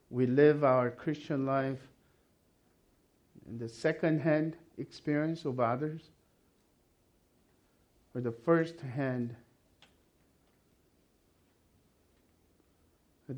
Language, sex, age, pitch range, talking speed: English, male, 50-69, 125-160 Hz, 65 wpm